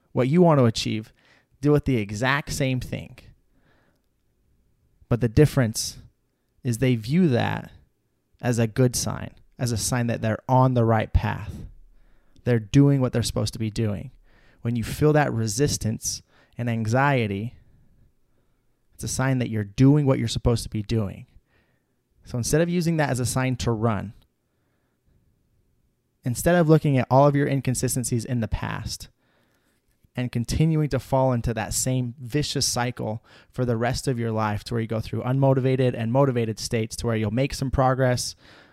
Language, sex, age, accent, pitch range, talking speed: English, male, 30-49, American, 110-130 Hz, 170 wpm